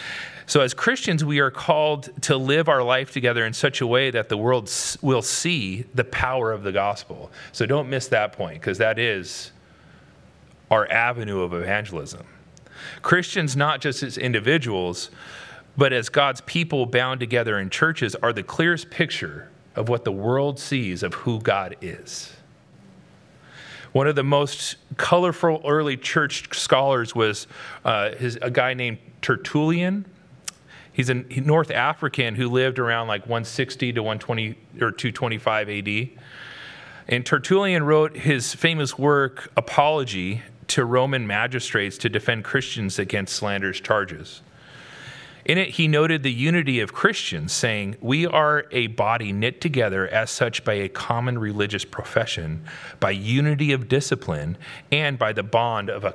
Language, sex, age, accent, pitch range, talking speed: English, male, 40-59, American, 110-145 Hz, 150 wpm